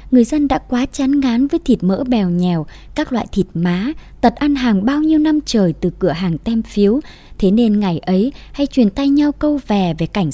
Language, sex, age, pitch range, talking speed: Vietnamese, male, 20-39, 185-250 Hz, 225 wpm